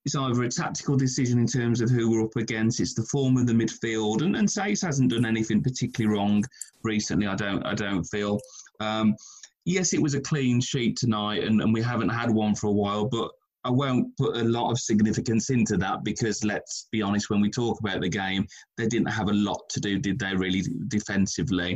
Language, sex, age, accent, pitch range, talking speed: English, male, 30-49, British, 110-130 Hz, 220 wpm